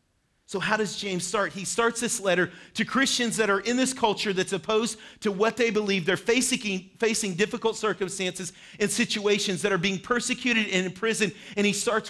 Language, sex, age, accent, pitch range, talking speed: English, male, 40-59, American, 165-215 Hz, 195 wpm